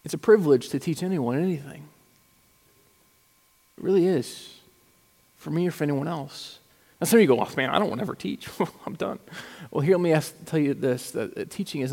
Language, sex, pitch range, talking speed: English, male, 140-170 Hz, 215 wpm